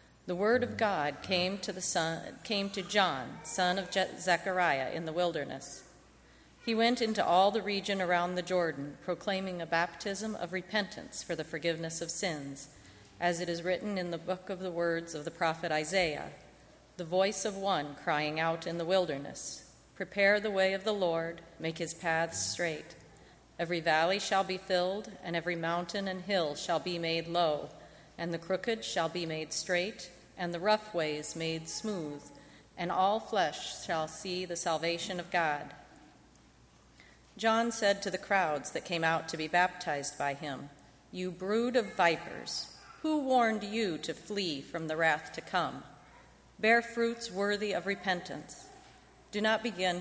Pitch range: 165-195 Hz